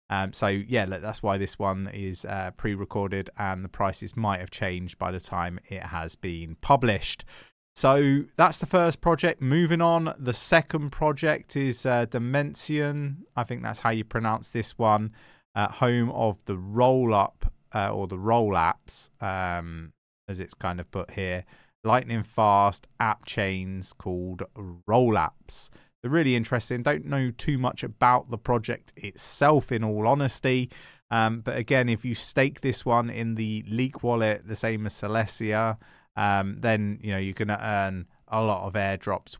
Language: English